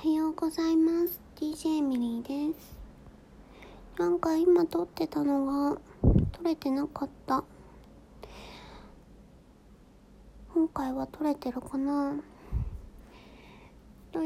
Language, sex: Japanese, male